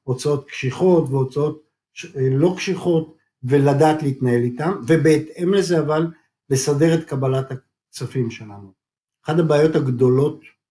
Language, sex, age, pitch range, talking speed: Hebrew, male, 50-69, 135-170 Hz, 105 wpm